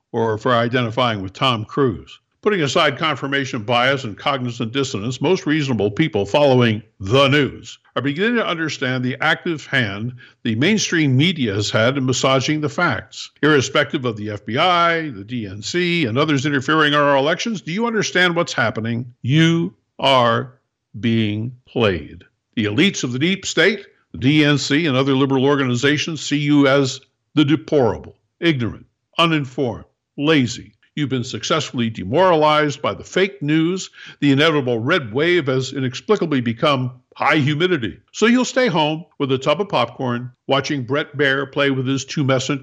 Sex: male